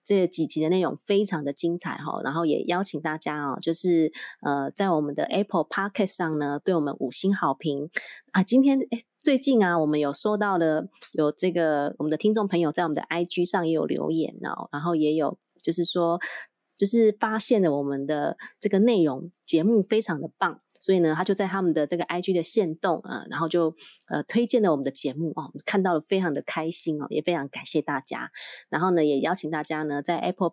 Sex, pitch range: female, 155-195 Hz